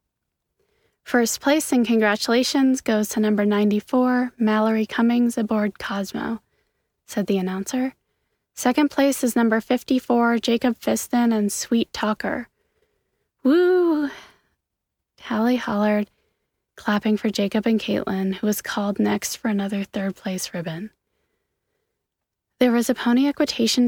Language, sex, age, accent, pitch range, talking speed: English, female, 20-39, American, 205-245 Hz, 115 wpm